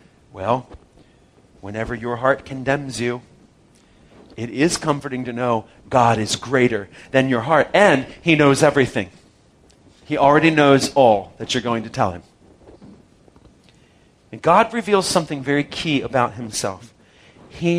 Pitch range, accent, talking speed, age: 120-190 Hz, American, 135 wpm, 40-59